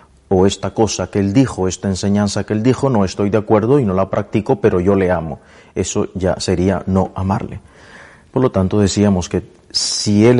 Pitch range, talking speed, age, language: 95-110 Hz, 200 wpm, 40-59, Spanish